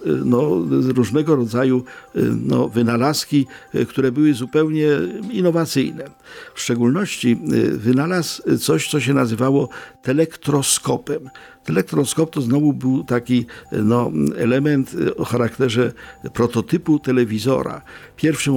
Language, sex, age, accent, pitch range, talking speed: Polish, male, 50-69, native, 120-150 Hz, 95 wpm